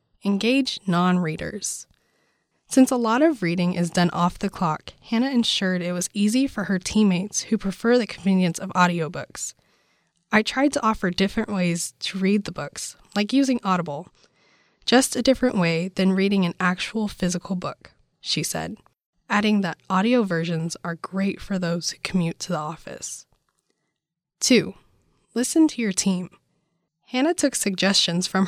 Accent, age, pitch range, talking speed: American, 20-39, 175-220 Hz, 155 wpm